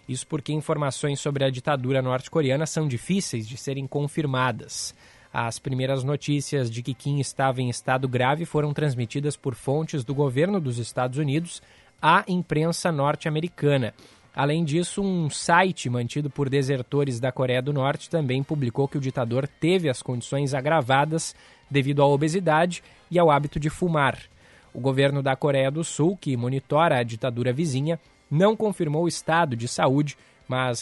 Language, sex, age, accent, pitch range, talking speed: Portuguese, male, 20-39, Brazilian, 130-160 Hz, 155 wpm